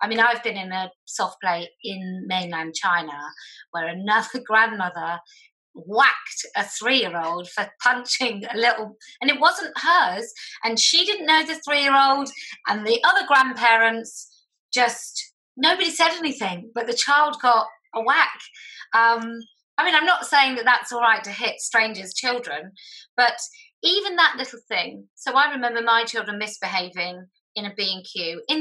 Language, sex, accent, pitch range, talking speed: English, female, British, 205-275 Hz, 155 wpm